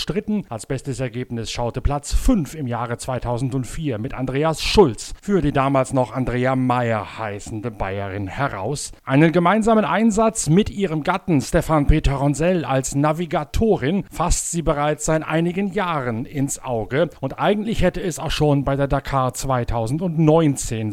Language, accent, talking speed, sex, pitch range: German, German, 145 wpm, male, 125-165 Hz